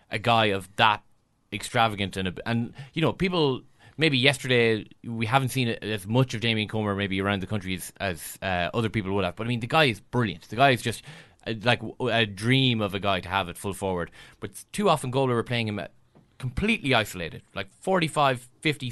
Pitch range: 105-135 Hz